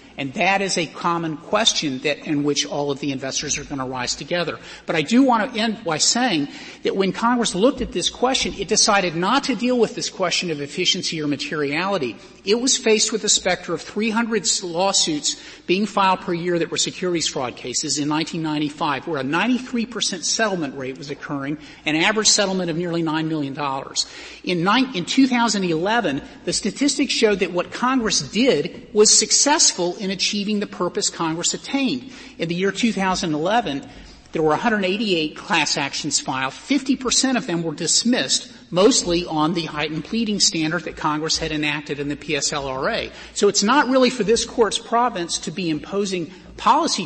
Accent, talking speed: American, 180 wpm